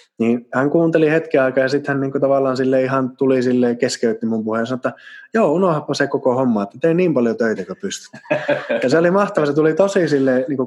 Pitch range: 105-140 Hz